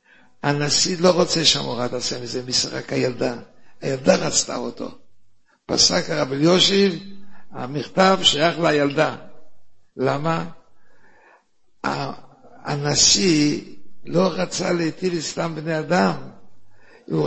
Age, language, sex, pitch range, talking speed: 60-79, Hebrew, male, 135-180 Hz, 90 wpm